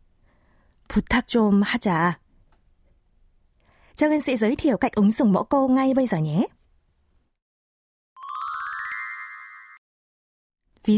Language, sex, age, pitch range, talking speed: Vietnamese, female, 20-39, 170-245 Hz, 105 wpm